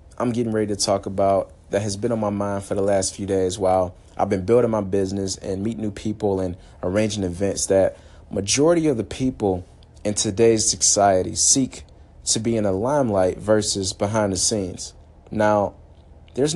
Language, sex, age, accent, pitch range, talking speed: English, male, 30-49, American, 95-120 Hz, 180 wpm